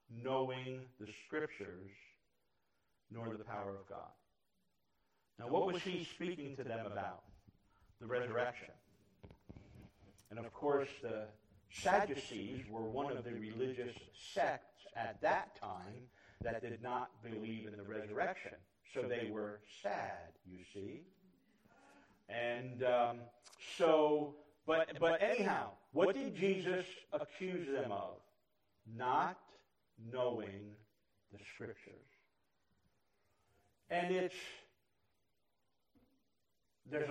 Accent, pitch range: American, 100-140 Hz